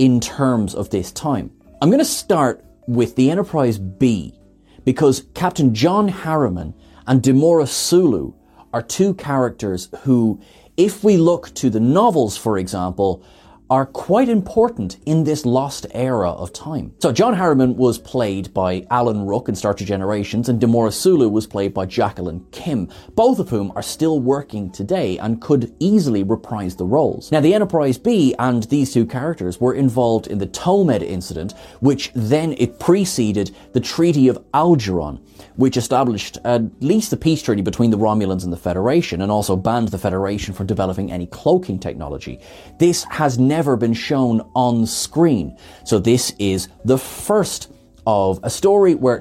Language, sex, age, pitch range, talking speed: English, male, 30-49, 100-140 Hz, 165 wpm